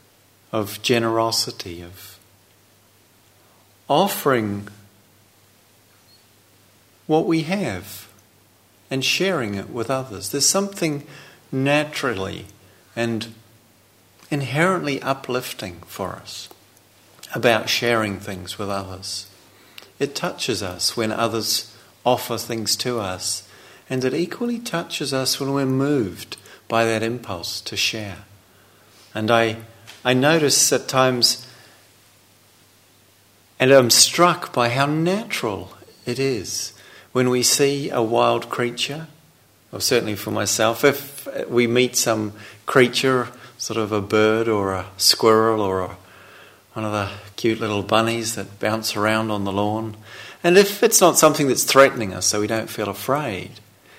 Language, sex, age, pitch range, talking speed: English, male, 50-69, 100-135 Hz, 120 wpm